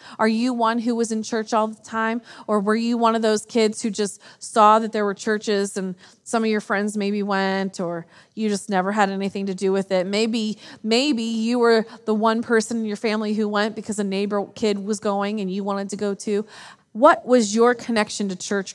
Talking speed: 225 wpm